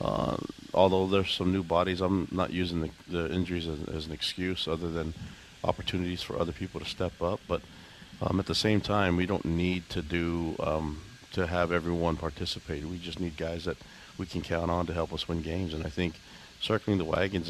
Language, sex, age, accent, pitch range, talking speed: English, male, 40-59, American, 80-90 Hz, 210 wpm